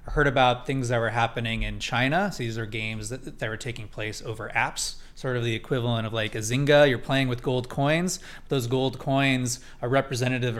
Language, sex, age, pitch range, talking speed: English, male, 20-39, 115-135 Hz, 210 wpm